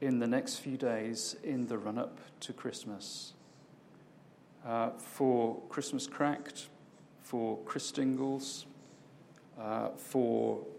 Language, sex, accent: English, male, British